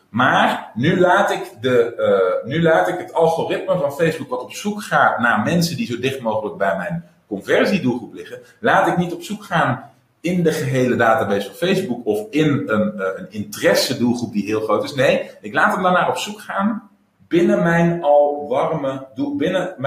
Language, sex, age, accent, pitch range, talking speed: Dutch, male, 40-59, Dutch, 115-180 Hz, 195 wpm